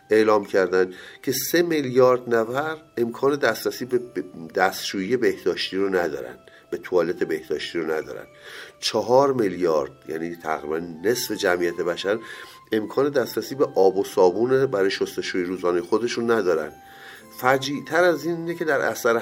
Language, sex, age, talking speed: Persian, male, 50-69, 130 wpm